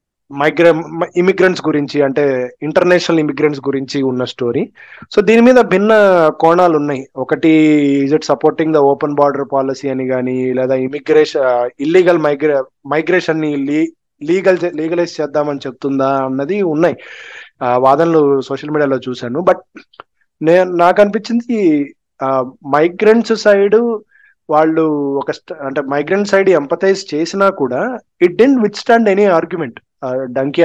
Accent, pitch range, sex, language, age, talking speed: native, 140-195 Hz, male, Telugu, 20-39, 115 wpm